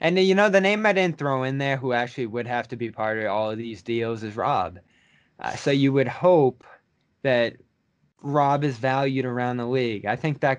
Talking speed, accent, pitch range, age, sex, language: 220 wpm, American, 110-140 Hz, 20-39, male, English